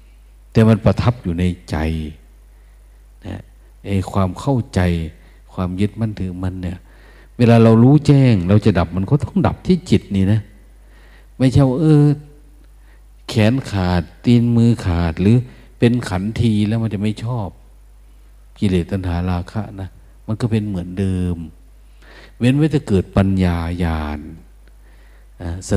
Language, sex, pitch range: Thai, male, 85-115 Hz